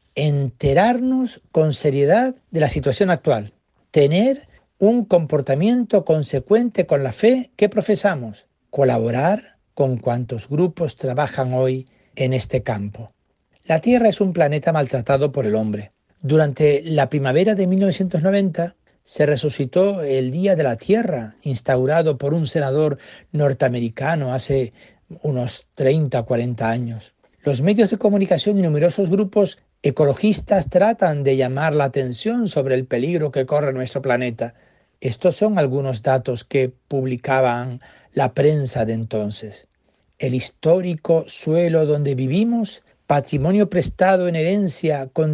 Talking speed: 125 wpm